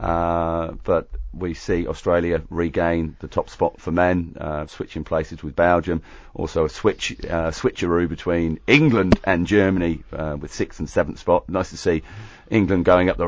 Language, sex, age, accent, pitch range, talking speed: English, male, 40-59, British, 75-85 Hz, 170 wpm